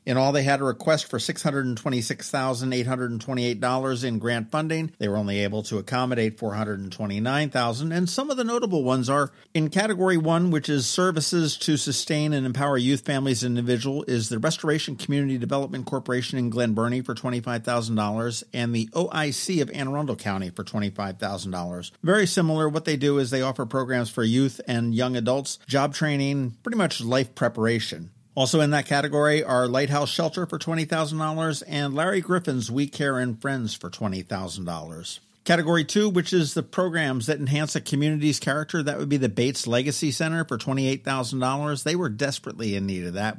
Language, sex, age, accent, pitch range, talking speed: English, male, 50-69, American, 115-155 Hz, 170 wpm